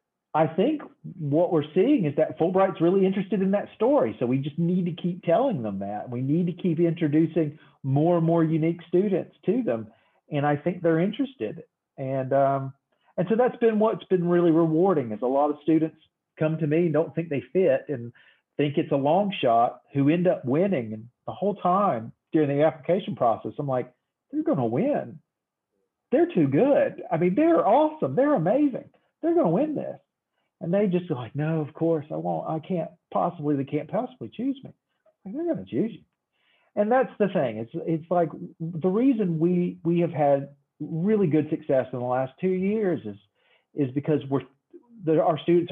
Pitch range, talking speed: 140-185 Hz, 200 wpm